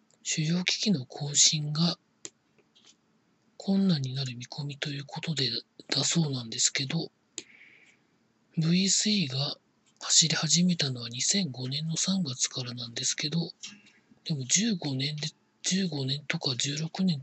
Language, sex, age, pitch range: Japanese, male, 40-59, 135-175 Hz